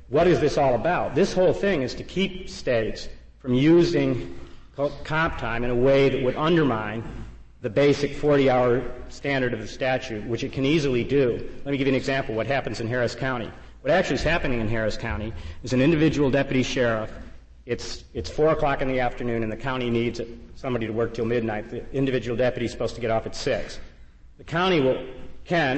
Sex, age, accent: male, 50-69, American